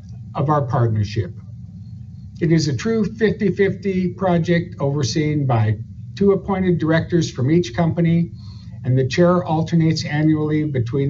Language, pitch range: English, 115-160 Hz